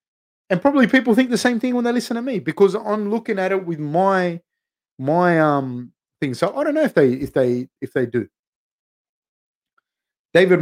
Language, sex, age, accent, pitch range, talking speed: English, male, 30-49, Australian, 135-185 Hz, 190 wpm